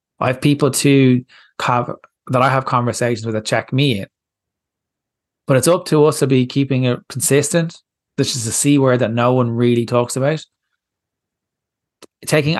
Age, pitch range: 20-39, 120-145 Hz